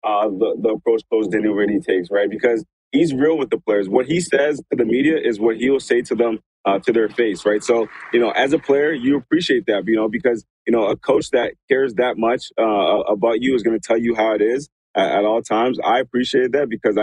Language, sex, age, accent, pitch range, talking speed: English, male, 20-39, American, 105-125 Hz, 255 wpm